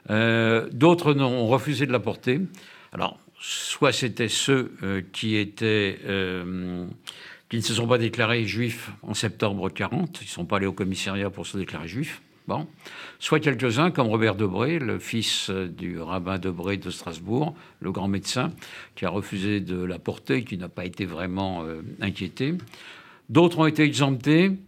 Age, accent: 60-79, French